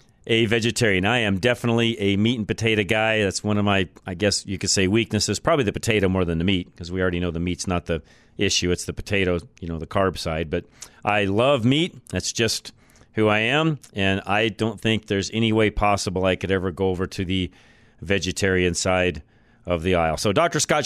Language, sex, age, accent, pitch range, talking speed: English, male, 40-59, American, 100-130 Hz, 220 wpm